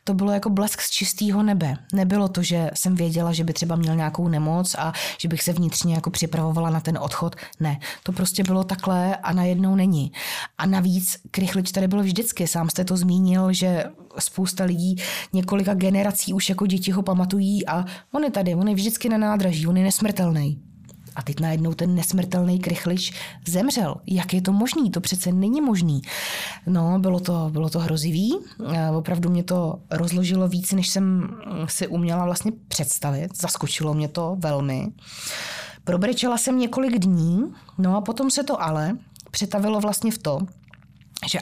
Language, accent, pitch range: Czech, native, 165-195 Hz